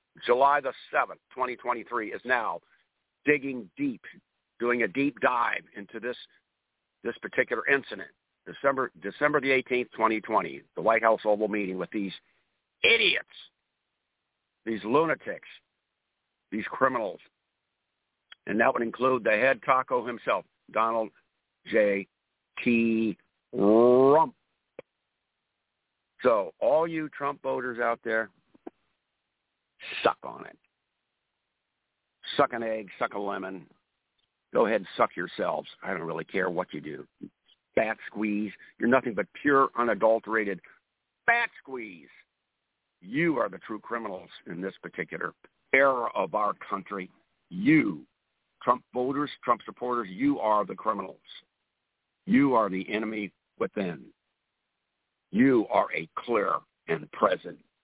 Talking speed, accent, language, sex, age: 120 wpm, American, English, male, 60-79